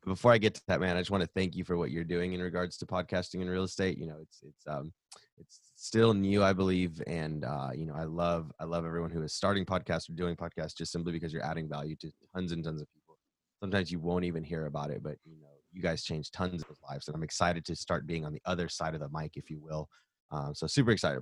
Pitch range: 80-95 Hz